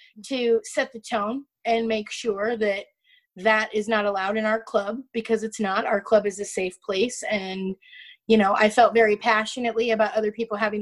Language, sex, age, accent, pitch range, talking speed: English, female, 30-49, American, 215-260 Hz, 195 wpm